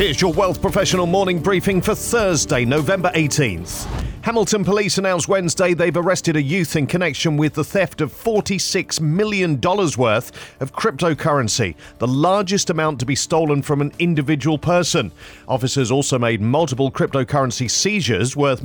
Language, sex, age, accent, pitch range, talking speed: English, male, 40-59, British, 130-170 Hz, 150 wpm